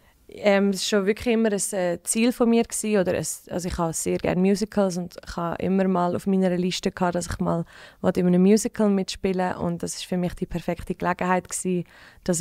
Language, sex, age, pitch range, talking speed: German, female, 20-39, 175-200 Hz, 215 wpm